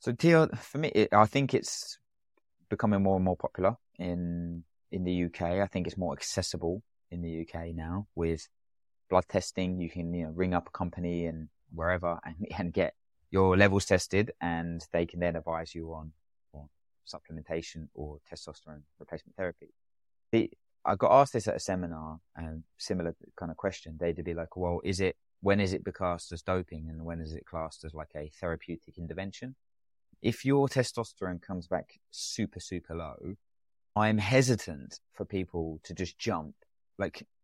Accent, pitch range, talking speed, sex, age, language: British, 85-100 Hz, 170 wpm, male, 20-39, English